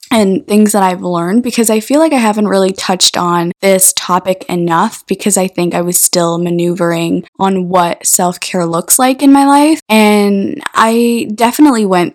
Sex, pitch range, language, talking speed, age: female, 175-210 Hz, English, 180 wpm, 10-29